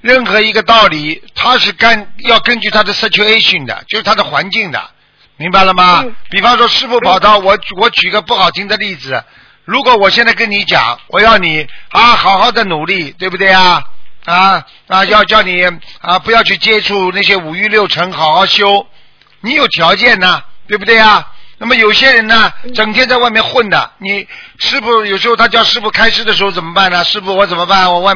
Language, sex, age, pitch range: Chinese, male, 50-69, 185-220 Hz